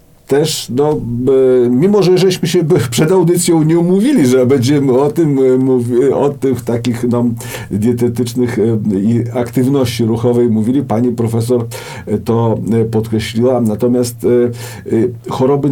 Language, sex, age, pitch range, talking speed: Polish, male, 50-69, 110-130 Hz, 115 wpm